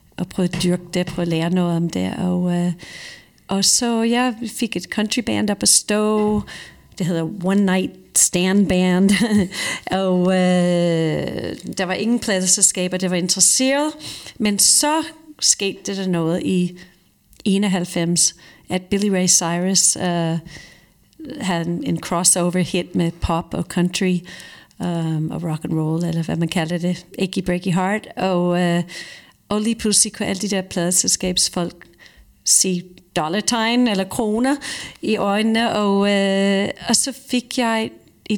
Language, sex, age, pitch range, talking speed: Danish, female, 40-59, 175-210 Hz, 145 wpm